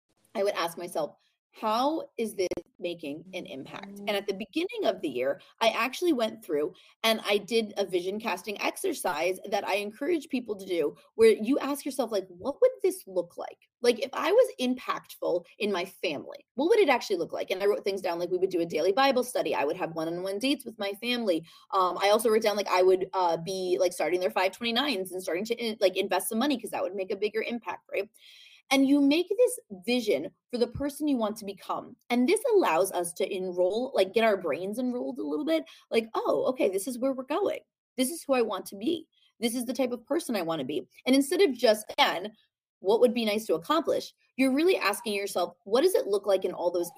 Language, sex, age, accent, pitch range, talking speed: English, female, 20-39, American, 190-280 Hz, 230 wpm